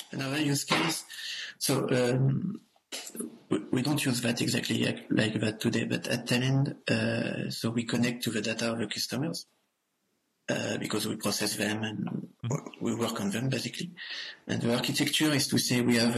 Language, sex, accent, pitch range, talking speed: English, male, French, 110-130 Hz, 165 wpm